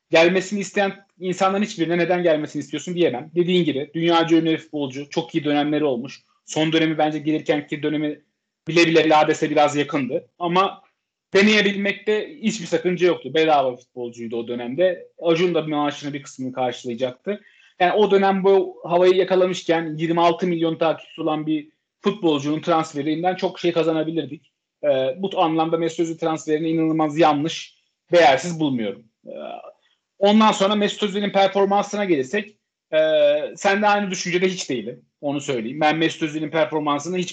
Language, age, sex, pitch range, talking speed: Turkish, 40-59, male, 155-185 Hz, 145 wpm